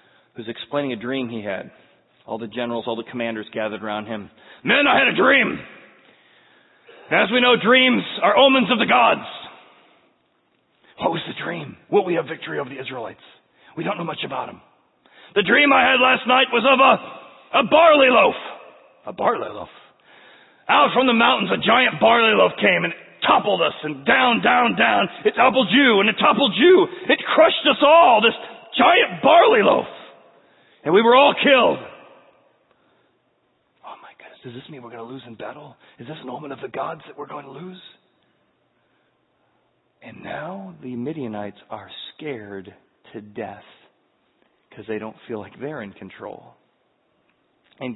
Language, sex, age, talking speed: English, male, 40-59, 175 wpm